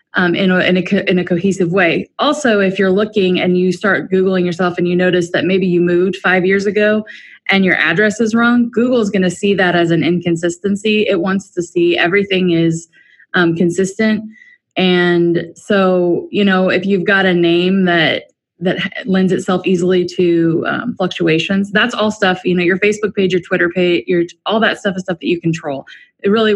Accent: American